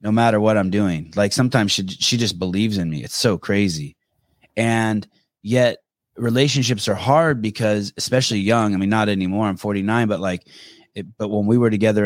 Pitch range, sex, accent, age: 105-135 Hz, male, American, 30-49